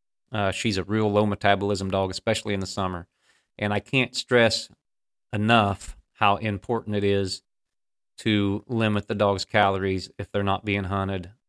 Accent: American